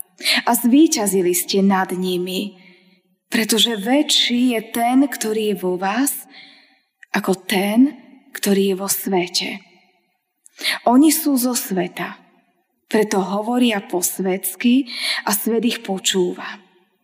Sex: female